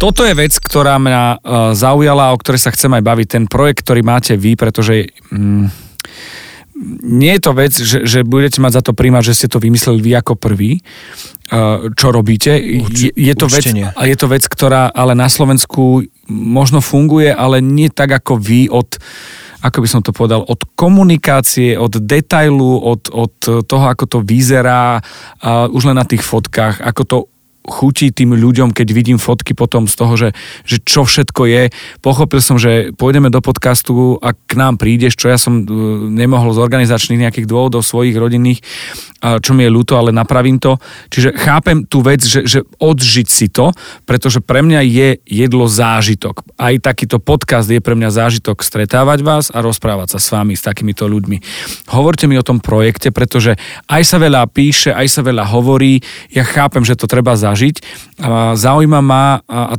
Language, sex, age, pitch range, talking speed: Slovak, male, 40-59, 115-135 Hz, 175 wpm